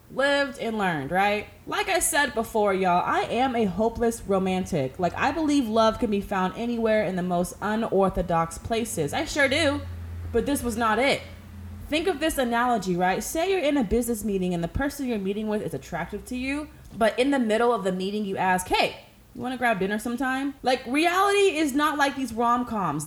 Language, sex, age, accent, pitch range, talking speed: English, female, 20-39, American, 185-265 Hz, 205 wpm